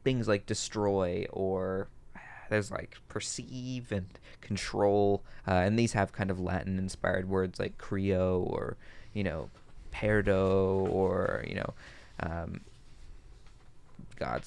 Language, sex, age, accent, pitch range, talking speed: English, male, 20-39, American, 95-110 Hz, 120 wpm